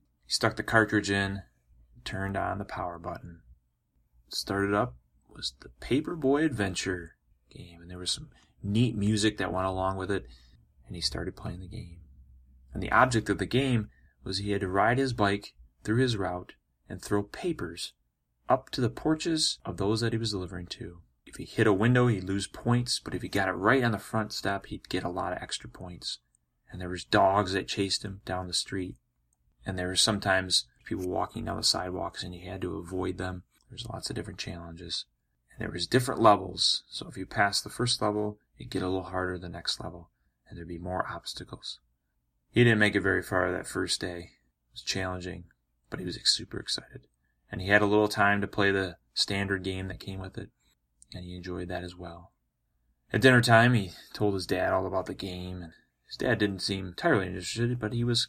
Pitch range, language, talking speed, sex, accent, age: 85-105 Hz, English, 210 wpm, male, American, 30-49